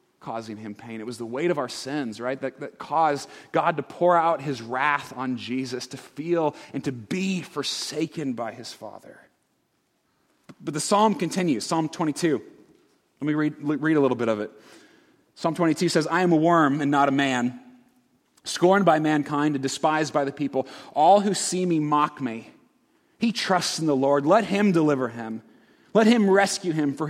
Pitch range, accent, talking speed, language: 135-165 Hz, American, 190 wpm, English